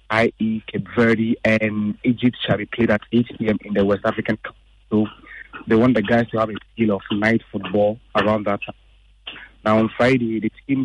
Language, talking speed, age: English, 195 wpm, 30-49